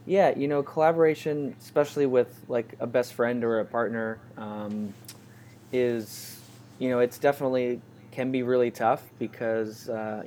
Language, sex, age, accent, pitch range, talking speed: English, male, 20-39, American, 110-125 Hz, 145 wpm